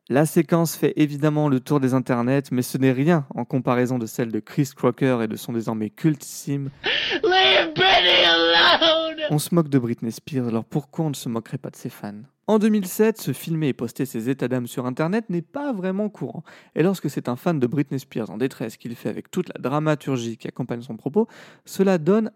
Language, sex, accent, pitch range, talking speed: French, male, French, 130-190 Hz, 205 wpm